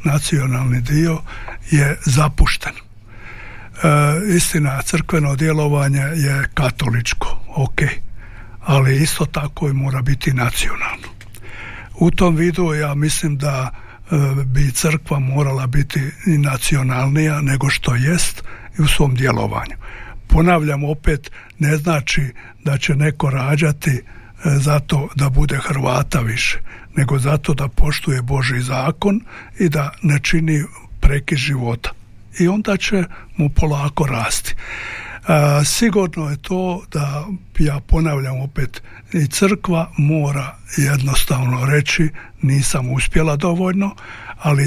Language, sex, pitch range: Croatian, male, 130-155 Hz